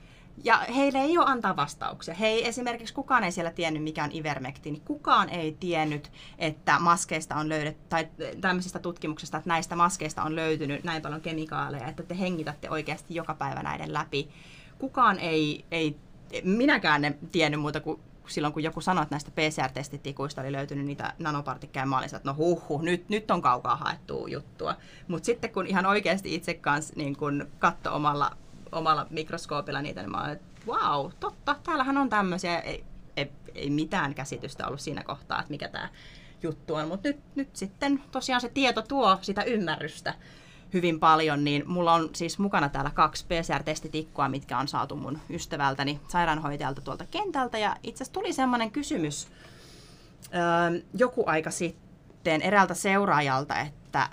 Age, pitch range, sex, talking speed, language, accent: 30-49, 150-185 Hz, female, 160 wpm, Finnish, native